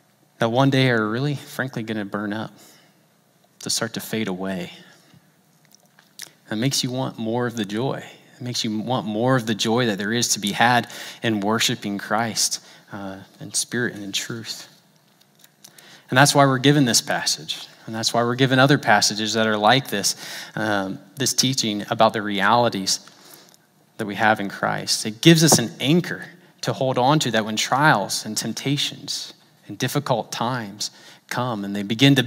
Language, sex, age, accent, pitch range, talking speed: English, male, 20-39, American, 105-130 Hz, 180 wpm